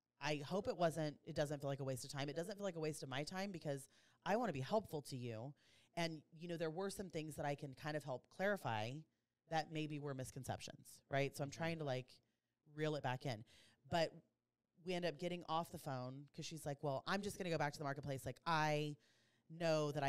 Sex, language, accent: female, English, American